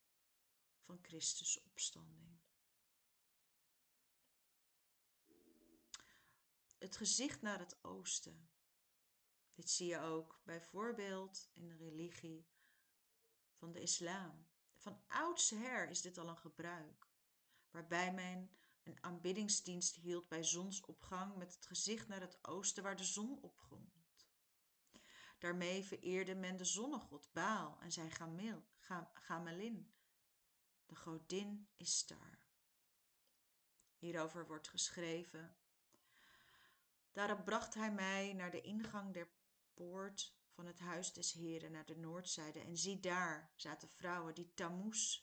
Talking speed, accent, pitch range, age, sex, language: 110 wpm, Dutch, 165-195 Hz, 40-59, female, Dutch